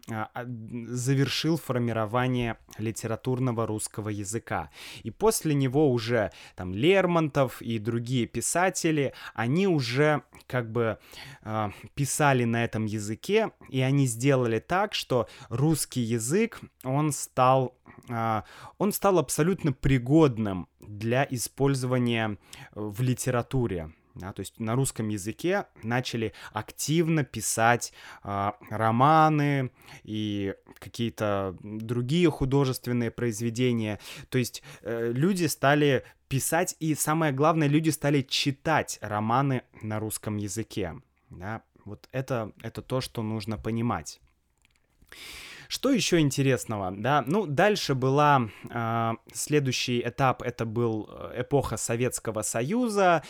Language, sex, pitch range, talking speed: Russian, male, 115-145 Hz, 105 wpm